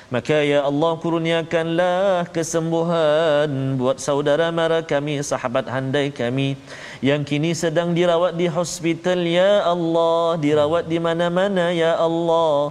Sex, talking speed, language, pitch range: male, 115 wpm, Malayalam, 150-175 Hz